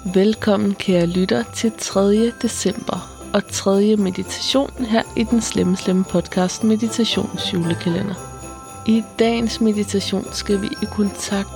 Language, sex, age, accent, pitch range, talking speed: Danish, female, 20-39, native, 180-200 Hz, 120 wpm